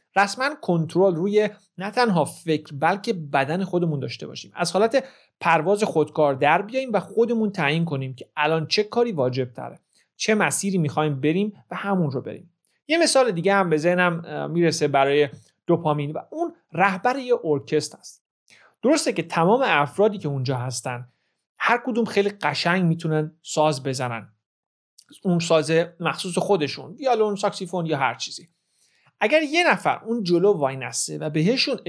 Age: 40-59